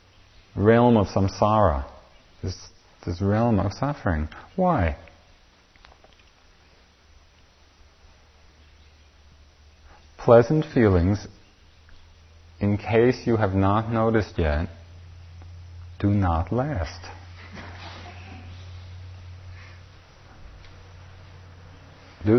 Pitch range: 85-125 Hz